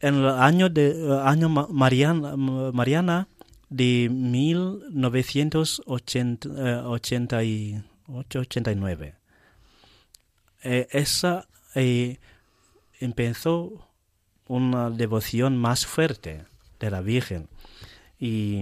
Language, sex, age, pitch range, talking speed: Spanish, male, 30-49, 115-150 Hz, 75 wpm